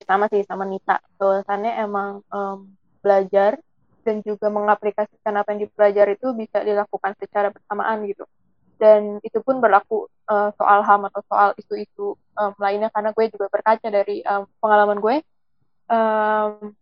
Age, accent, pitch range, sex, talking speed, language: 20-39, native, 200-220 Hz, female, 145 wpm, Indonesian